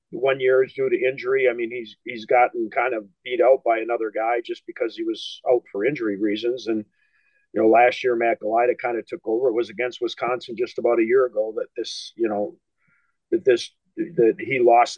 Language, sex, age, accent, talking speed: English, male, 40-59, American, 220 wpm